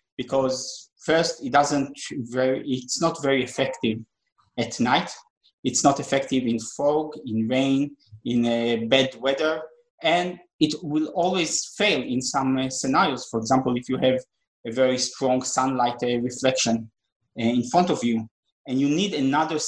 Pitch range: 125-155 Hz